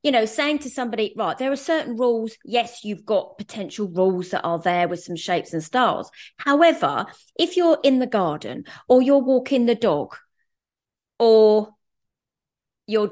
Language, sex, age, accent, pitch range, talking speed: English, female, 30-49, British, 210-280 Hz, 165 wpm